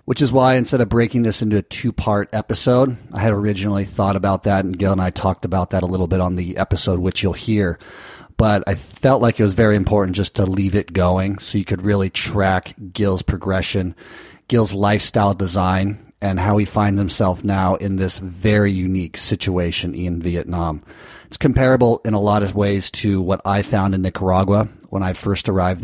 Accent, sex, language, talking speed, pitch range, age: American, male, English, 200 wpm, 95-105 Hz, 30-49